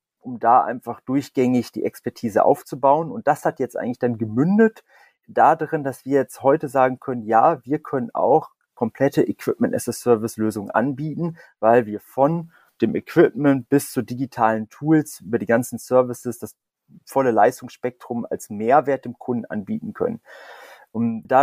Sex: male